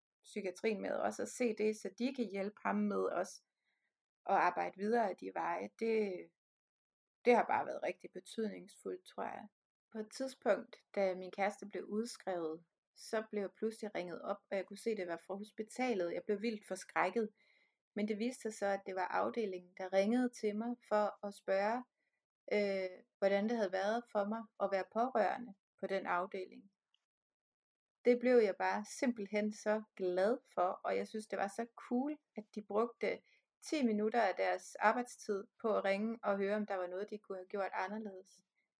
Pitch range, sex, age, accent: 190-220 Hz, female, 30-49, native